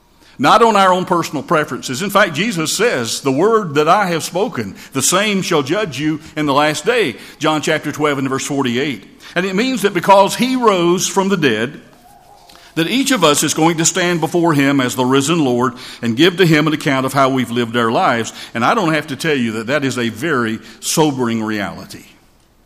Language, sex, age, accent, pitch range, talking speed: English, male, 50-69, American, 130-160 Hz, 215 wpm